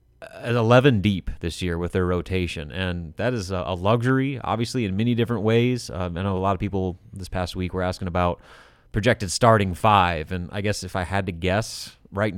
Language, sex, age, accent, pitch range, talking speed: English, male, 30-49, American, 95-110 Hz, 210 wpm